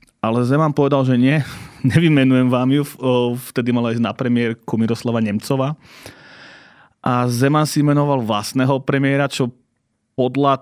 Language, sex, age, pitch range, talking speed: Slovak, male, 30-49, 115-135 Hz, 130 wpm